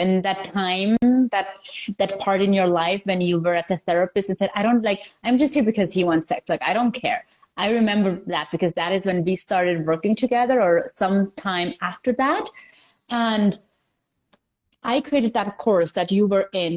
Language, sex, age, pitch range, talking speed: English, female, 20-39, 175-215 Hz, 200 wpm